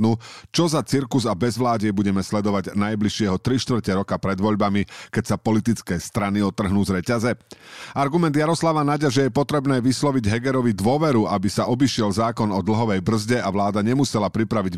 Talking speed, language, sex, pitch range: 160 wpm, Slovak, male, 105-130 Hz